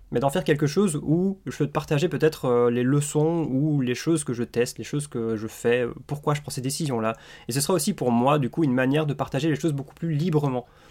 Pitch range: 120-155 Hz